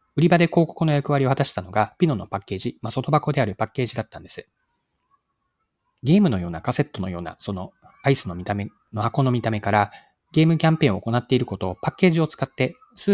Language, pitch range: Japanese, 105-155 Hz